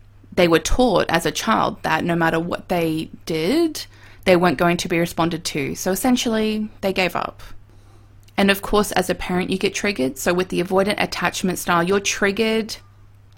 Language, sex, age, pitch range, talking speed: English, female, 20-39, 140-190 Hz, 185 wpm